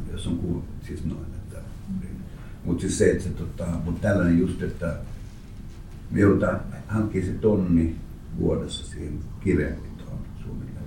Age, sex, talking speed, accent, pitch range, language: 60-79, male, 95 wpm, native, 80-100 Hz, Finnish